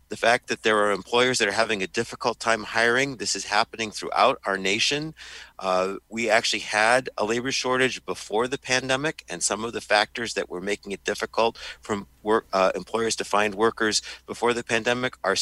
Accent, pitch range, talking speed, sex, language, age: American, 100-120 Hz, 195 wpm, male, English, 50-69